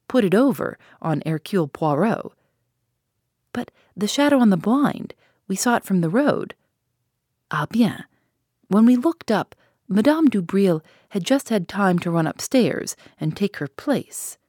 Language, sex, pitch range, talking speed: English, female, 155-235 Hz, 155 wpm